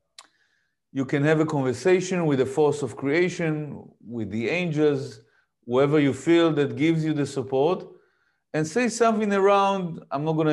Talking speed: 160 wpm